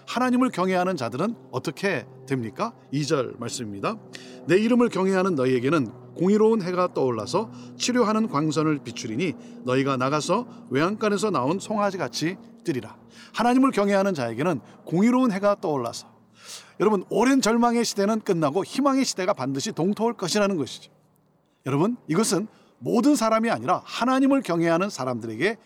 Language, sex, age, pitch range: Korean, male, 40-59, 155-240 Hz